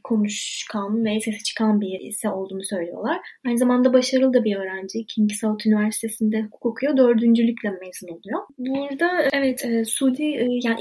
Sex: female